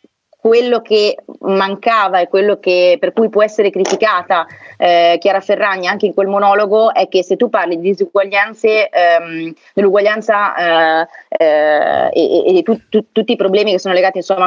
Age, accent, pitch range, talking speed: 30-49, native, 185-240 Hz, 165 wpm